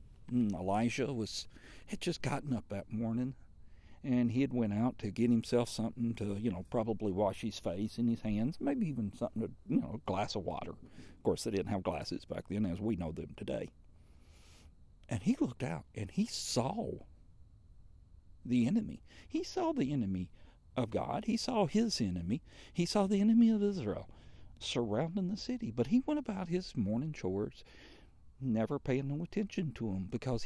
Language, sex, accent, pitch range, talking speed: English, male, American, 95-140 Hz, 180 wpm